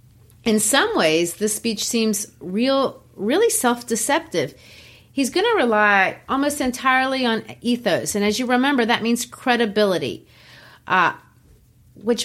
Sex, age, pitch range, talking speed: female, 30-49, 200-275 Hz, 125 wpm